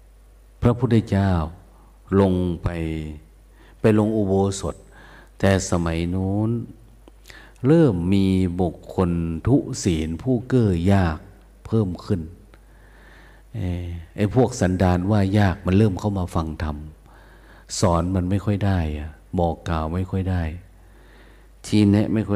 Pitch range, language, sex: 85-105 Hz, Thai, male